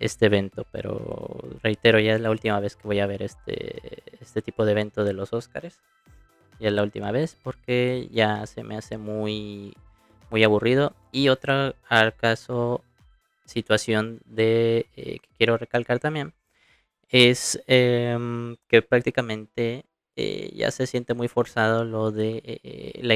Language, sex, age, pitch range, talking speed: Spanish, male, 20-39, 105-120 Hz, 155 wpm